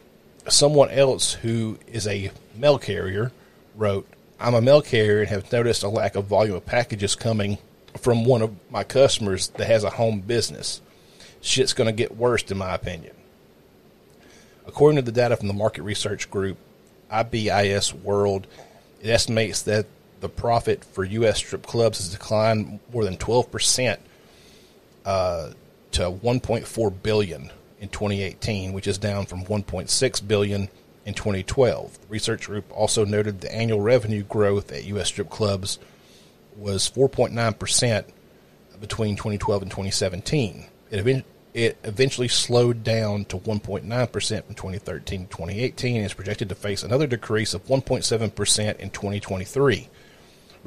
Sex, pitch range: male, 100-115 Hz